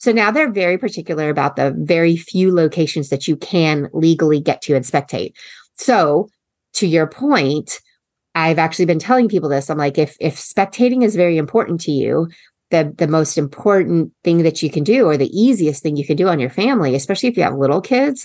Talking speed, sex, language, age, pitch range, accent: 205 wpm, female, English, 30-49, 140-175 Hz, American